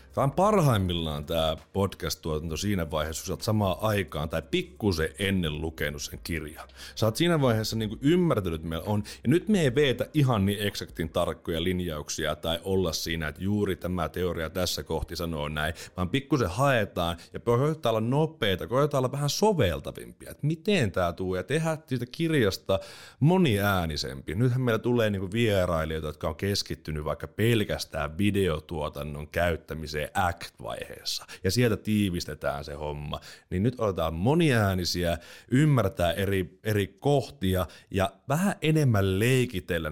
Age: 30-49